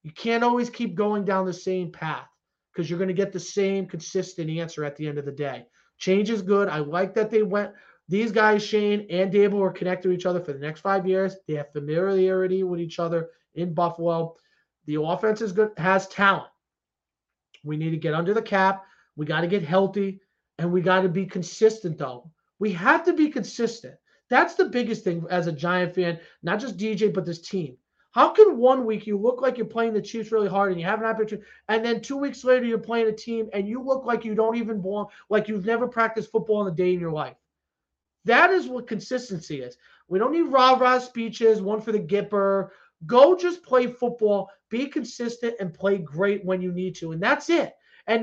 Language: English